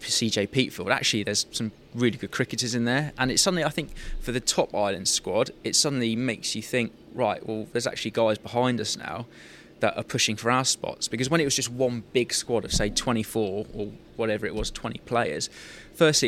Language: English